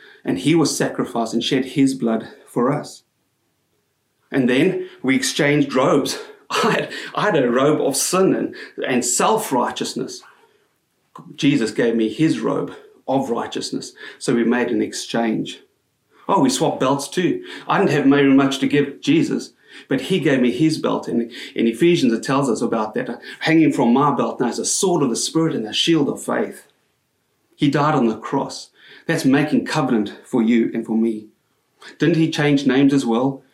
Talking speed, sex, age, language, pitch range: 180 wpm, male, 30-49, English, 130-160 Hz